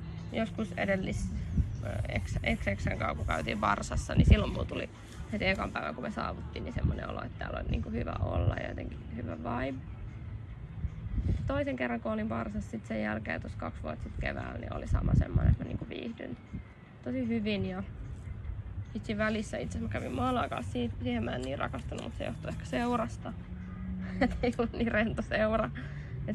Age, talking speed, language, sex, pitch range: 20-39, 175 wpm, Finnish, female, 90-125 Hz